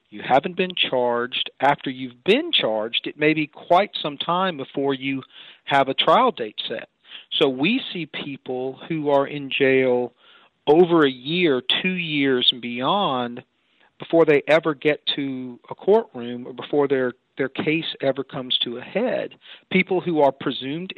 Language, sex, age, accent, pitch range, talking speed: English, male, 40-59, American, 130-160 Hz, 165 wpm